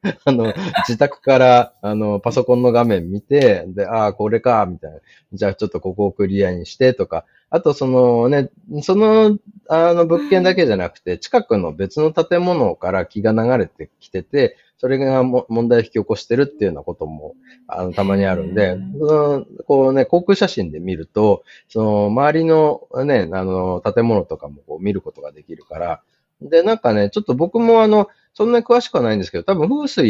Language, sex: Japanese, male